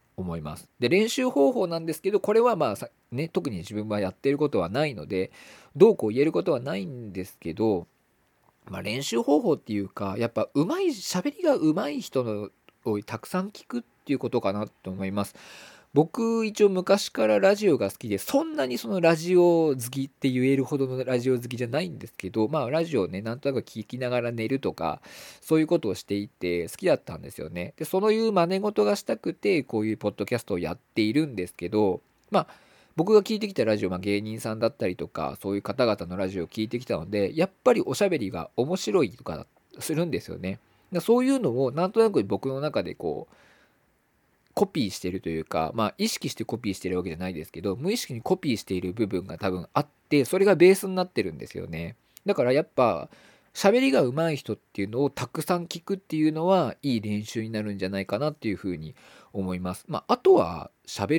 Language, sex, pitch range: Japanese, male, 100-165 Hz